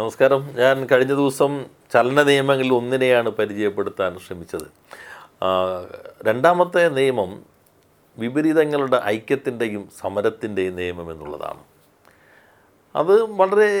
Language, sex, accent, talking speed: Malayalam, male, native, 75 wpm